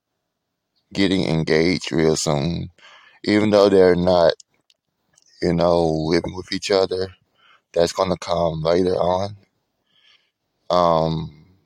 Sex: male